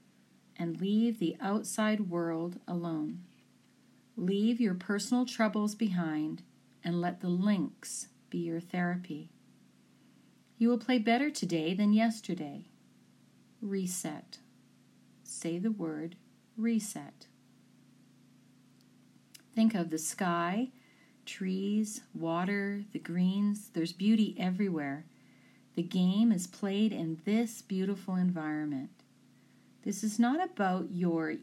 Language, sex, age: English, female, 40-59